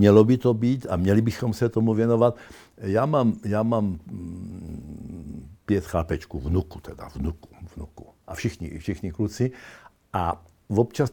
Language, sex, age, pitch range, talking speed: Czech, male, 60-79, 90-120 Hz, 140 wpm